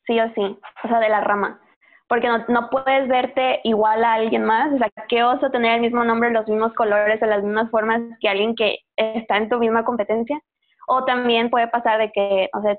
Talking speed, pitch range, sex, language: 225 wpm, 215-245 Hz, female, Spanish